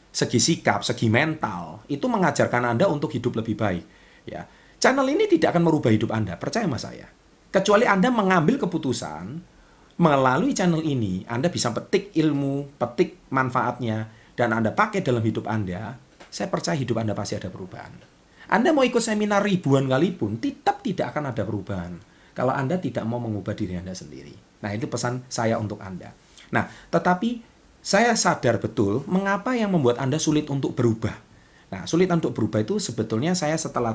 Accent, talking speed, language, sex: native, 165 wpm, Indonesian, male